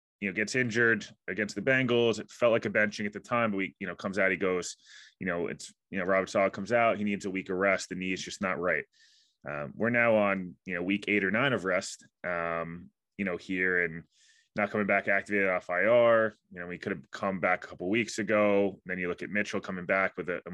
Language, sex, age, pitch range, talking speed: English, male, 20-39, 90-105 Hz, 265 wpm